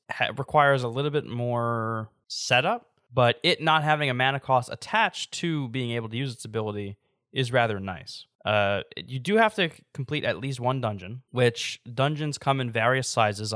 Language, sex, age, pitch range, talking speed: English, male, 10-29, 110-135 Hz, 175 wpm